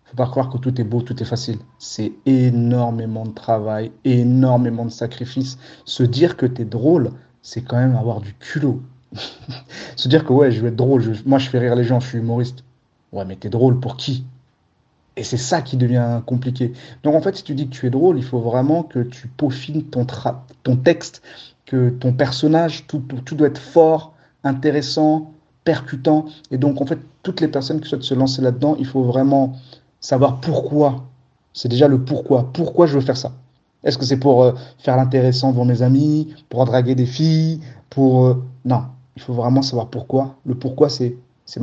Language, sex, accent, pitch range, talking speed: French, male, French, 125-140 Hz, 210 wpm